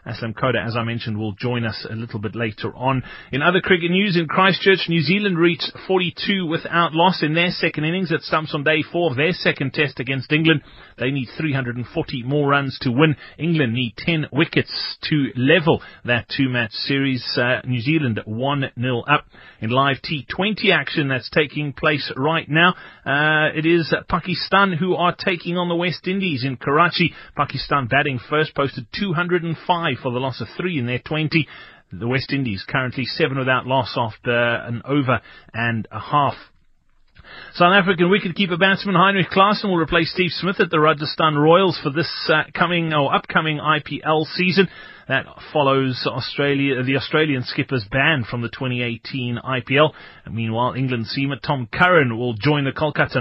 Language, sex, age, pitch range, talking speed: English, male, 30-49, 130-170 Hz, 175 wpm